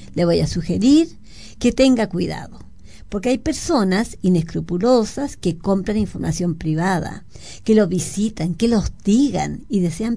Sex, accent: female, American